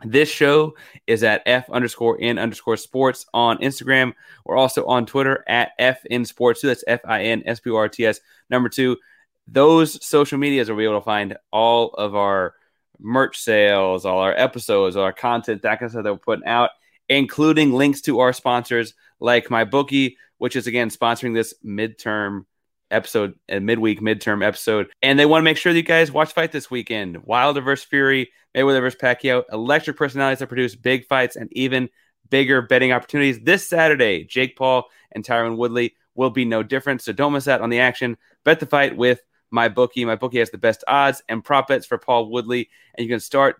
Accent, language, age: American, English, 30-49